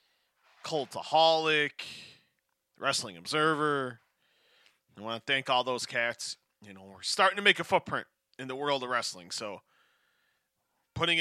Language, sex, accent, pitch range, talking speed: English, male, American, 130-170 Hz, 135 wpm